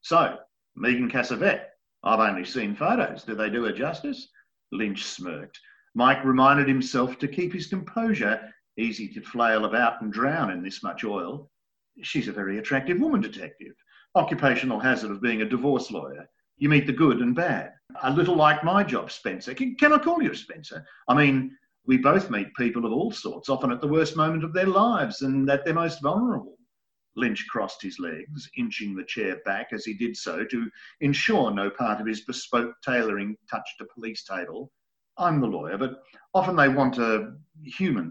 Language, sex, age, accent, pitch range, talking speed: English, male, 50-69, Australian, 115-190 Hz, 185 wpm